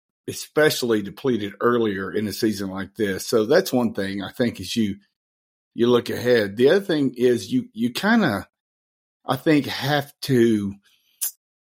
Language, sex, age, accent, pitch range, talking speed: English, male, 50-69, American, 105-130 Hz, 160 wpm